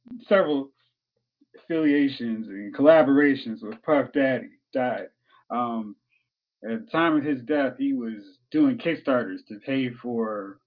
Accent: American